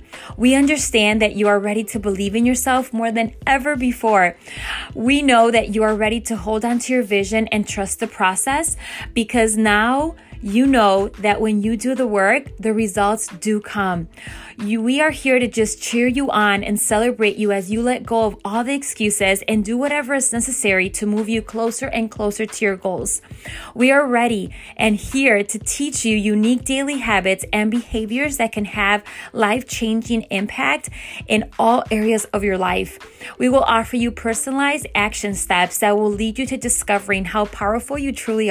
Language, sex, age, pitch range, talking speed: English, female, 20-39, 210-245 Hz, 185 wpm